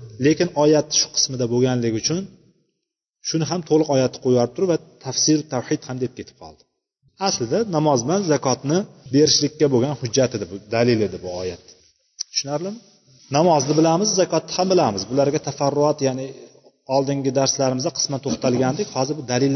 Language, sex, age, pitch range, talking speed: Russian, male, 30-49, 125-170 Hz, 115 wpm